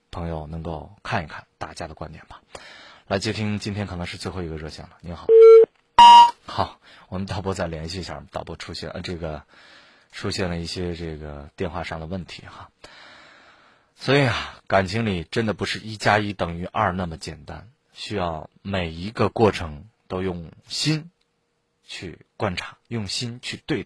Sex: male